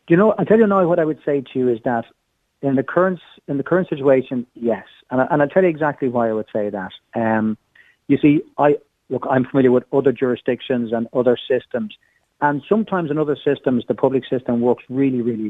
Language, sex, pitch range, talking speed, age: English, male, 115-140 Hz, 205 wpm, 40-59